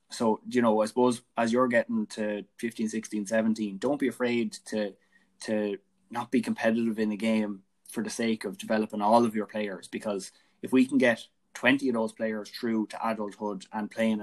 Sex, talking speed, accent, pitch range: male, 195 wpm, Irish, 100-115 Hz